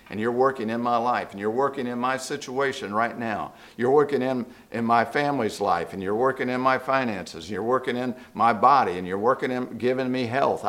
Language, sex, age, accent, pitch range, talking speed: English, male, 50-69, American, 115-140 Hz, 225 wpm